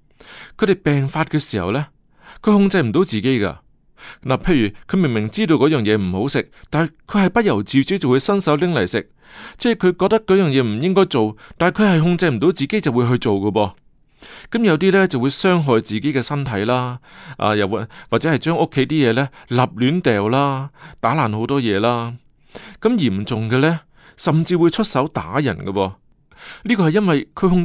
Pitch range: 115-180 Hz